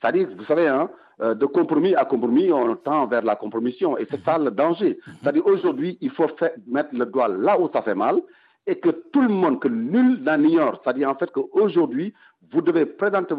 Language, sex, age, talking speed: French, male, 60-79, 200 wpm